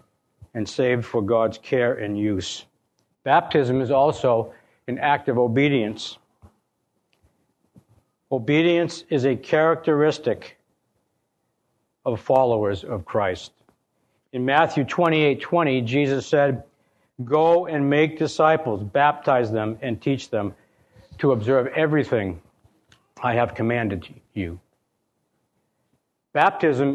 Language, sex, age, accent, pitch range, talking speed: English, male, 60-79, American, 115-150 Hz, 100 wpm